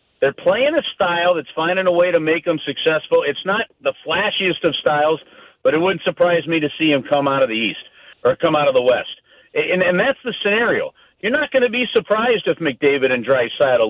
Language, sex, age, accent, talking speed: English, male, 50-69, American, 225 wpm